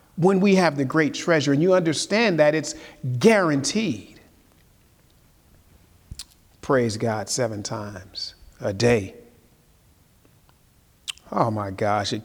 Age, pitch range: 40-59, 125-205 Hz